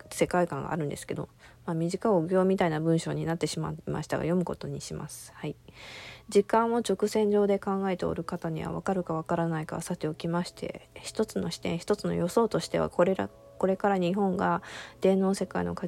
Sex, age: female, 20-39